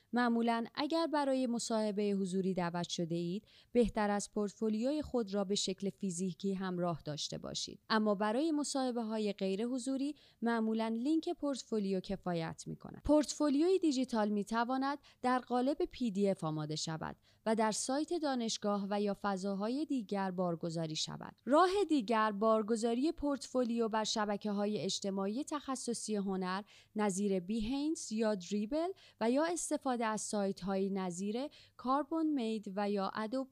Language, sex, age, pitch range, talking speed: Persian, female, 30-49, 195-260 Hz, 135 wpm